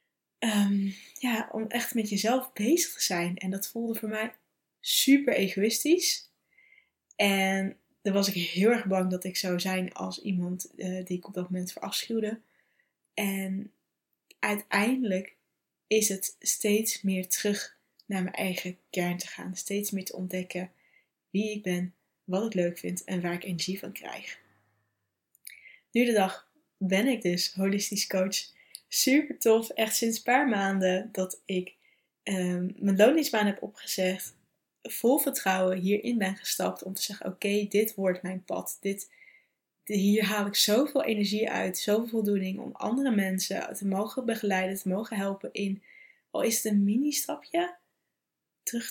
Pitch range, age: 185-220 Hz, 10-29